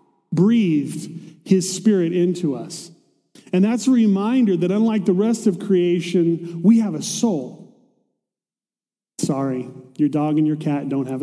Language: English